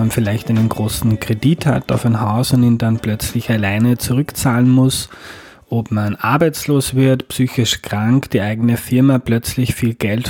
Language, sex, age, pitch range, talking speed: German, male, 20-39, 110-135 Hz, 165 wpm